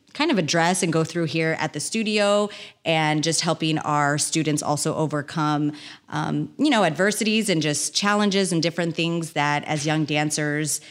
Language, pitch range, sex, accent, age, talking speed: English, 150-185 Hz, female, American, 30-49, 170 wpm